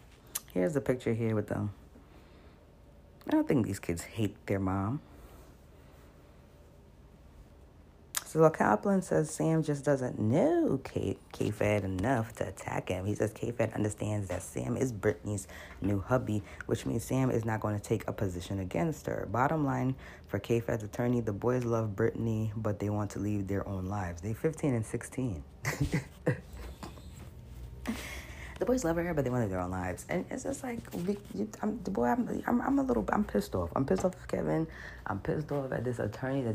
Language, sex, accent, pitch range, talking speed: English, female, American, 100-130 Hz, 180 wpm